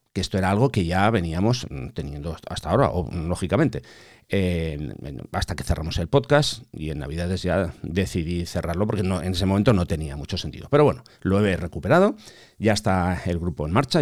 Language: English